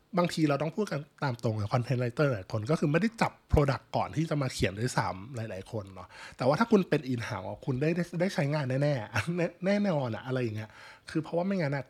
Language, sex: Thai, male